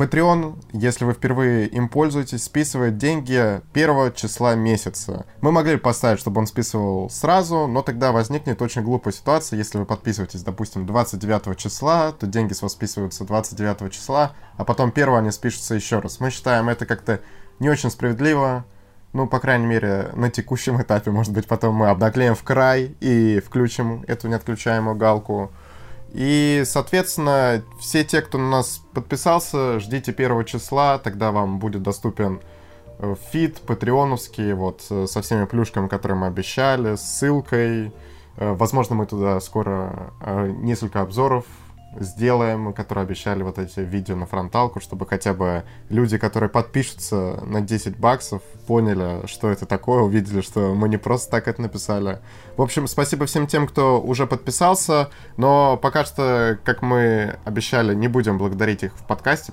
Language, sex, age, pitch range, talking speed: Russian, male, 20-39, 105-130 Hz, 155 wpm